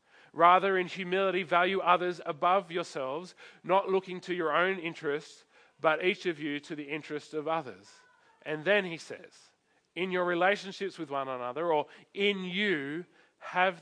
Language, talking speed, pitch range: English, 155 wpm, 145-185 Hz